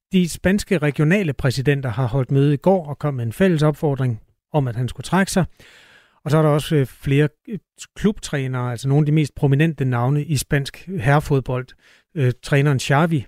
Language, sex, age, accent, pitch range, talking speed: Danish, male, 30-49, native, 125-150 Hz, 180 wpm